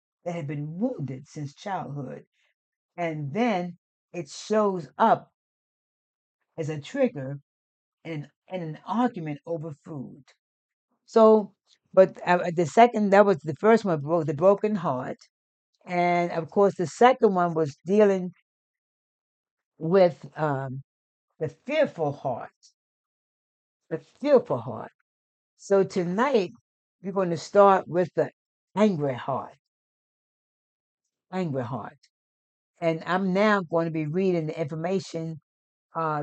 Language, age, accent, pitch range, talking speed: English, 60-79, American, 155-200 Hz, 115 wpm